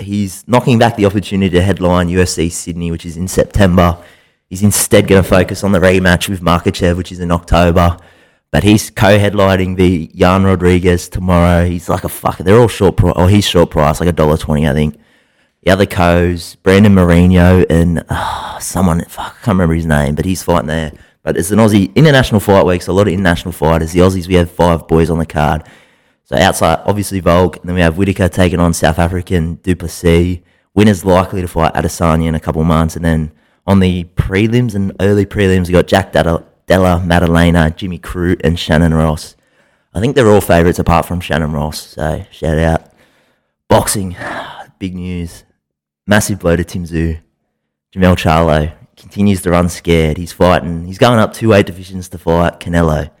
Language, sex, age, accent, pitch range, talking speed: English, male, 20-39, Australian, 85-95 Hz, 190 wpm